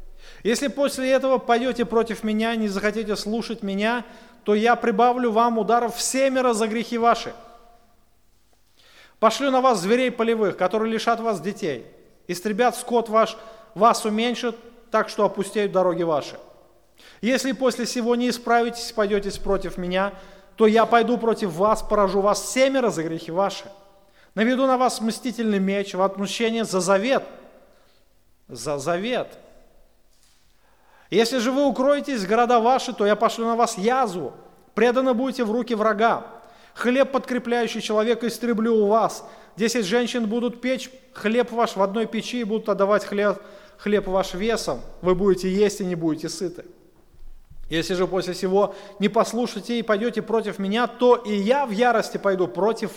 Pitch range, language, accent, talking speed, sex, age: 200-240 Hz, Russian, native, 150 wpm, male, 30-49